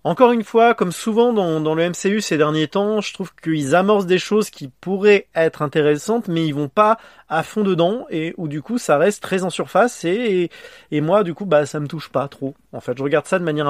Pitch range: 140-190 Hz